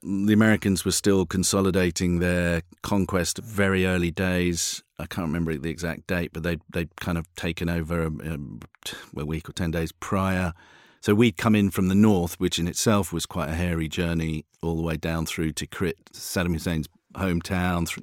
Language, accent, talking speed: English, British, 185 wpm